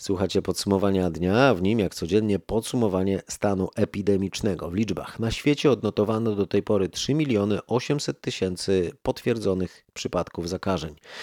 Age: 40-59